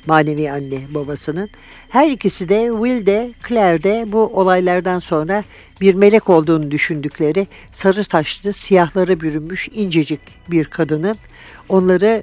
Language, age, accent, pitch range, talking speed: Turkish, 60-79, native, 160-200 Hz, 125 wpm